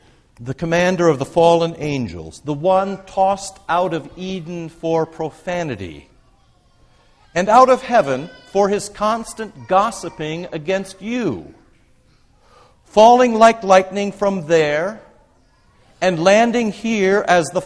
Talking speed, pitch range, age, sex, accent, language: 115 wpm, 170-220 Hz, 60-79, male, American, English